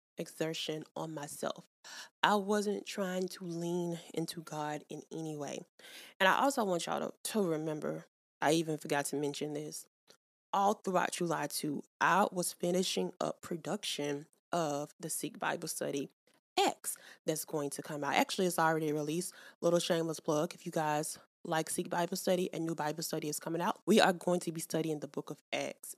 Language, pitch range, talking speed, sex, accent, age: English, 155-185 Hz, 180 wpm, female, American, 20-39